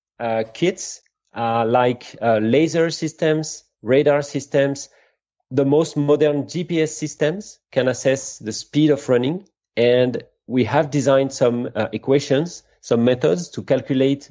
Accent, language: French, English